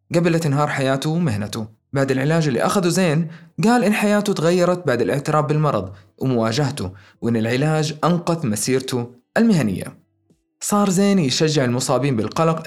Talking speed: 130 wpm